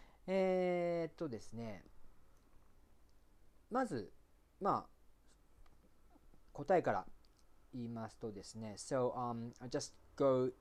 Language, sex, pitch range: Japanese, male, 110-140 Hz